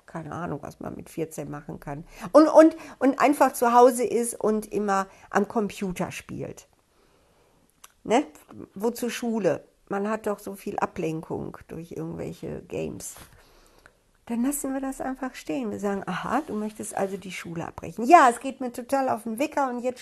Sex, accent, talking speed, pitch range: female, German, 170 wpm, 185-235 Hz